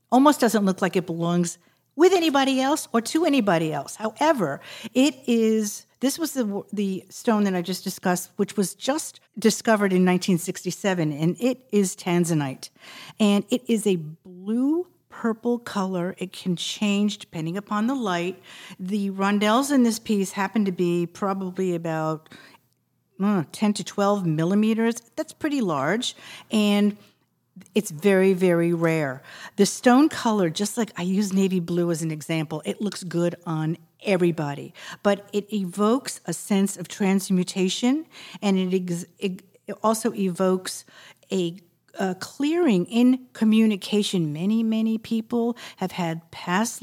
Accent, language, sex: American, English, female